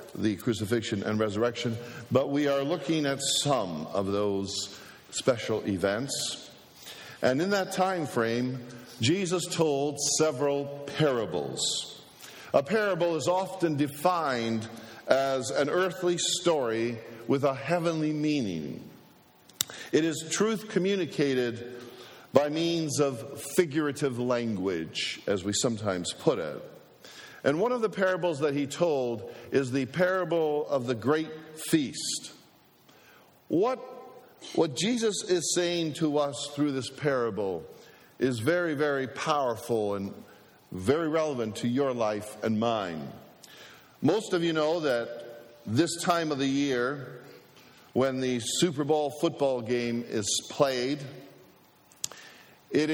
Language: English